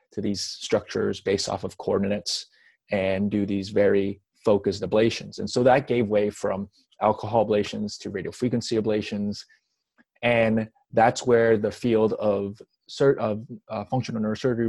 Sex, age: male, 20-39